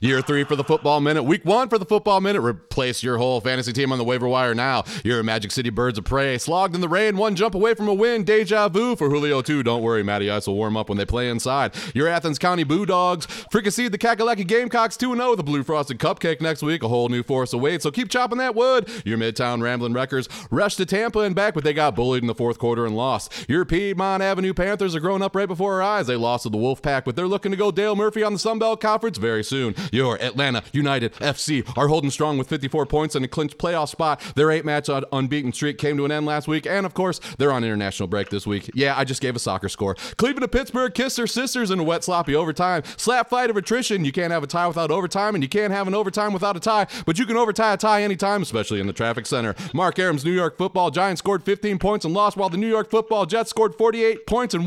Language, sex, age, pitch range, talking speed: English, male, 30-49, 130-210 Hz, 260 wpm